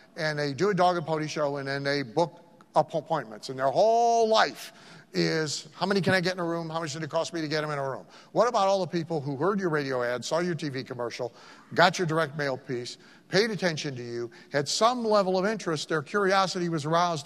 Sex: male